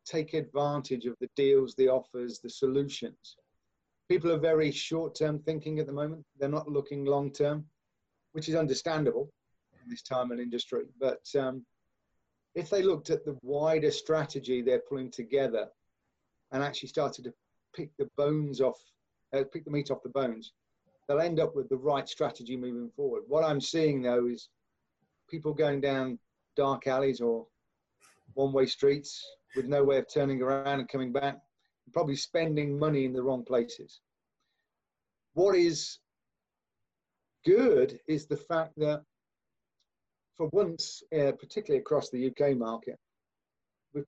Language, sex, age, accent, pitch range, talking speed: English, male, 40-59, British, 130-155 Hz, 150 wpm